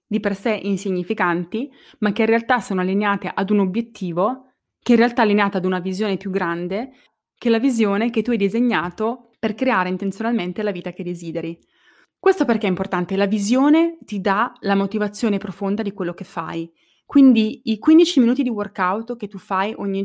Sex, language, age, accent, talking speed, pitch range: female, Italian, 20-39, native, 190 wpm, 180-225 Hz